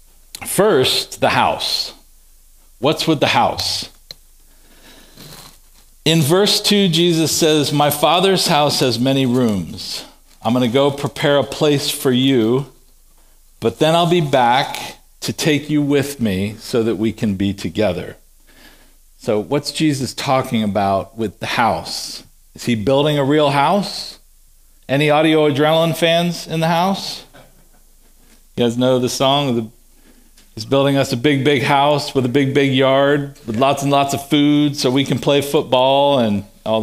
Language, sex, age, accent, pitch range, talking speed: English, male, 50-69, American, 115-150 Hz, 155 wpm